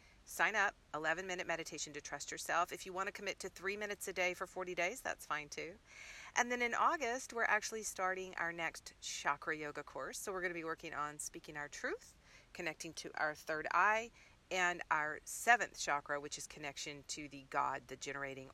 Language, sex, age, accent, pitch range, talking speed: English, female, 40-59, American, 150-185 Hz, 205 wpm